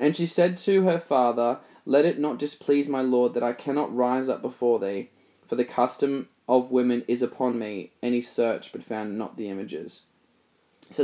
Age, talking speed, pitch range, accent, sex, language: 20-39, 190 wpm, 125-150 Hz, Australian, male, English